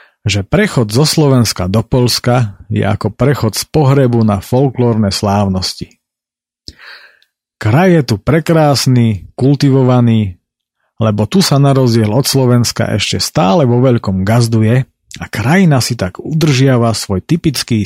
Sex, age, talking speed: male, 40-59, 130 wpm